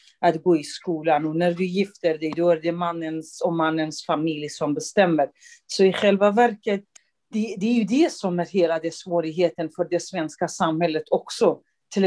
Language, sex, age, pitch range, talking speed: Swedish, female, 40-59, 170-210 Hz, 185 wpm